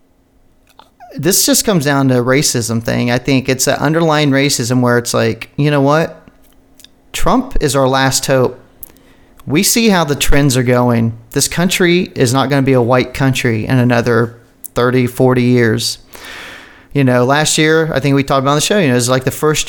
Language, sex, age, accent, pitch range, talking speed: English, male, 40-59, American, 120-140 Hz, 200 wpm